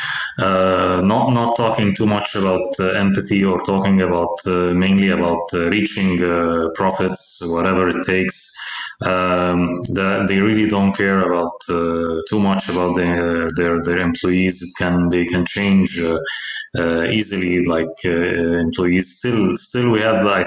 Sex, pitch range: male, 90-100 Hz